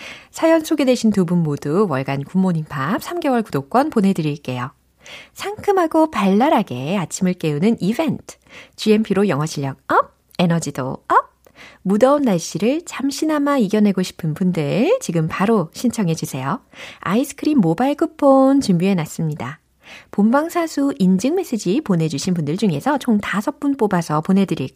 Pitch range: 165-275 Hz